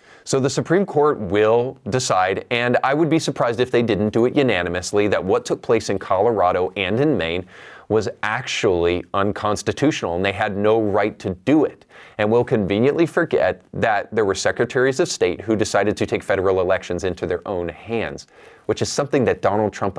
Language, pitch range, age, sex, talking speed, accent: English, 105-135 Hz, 30-49, male, 190 wpm, American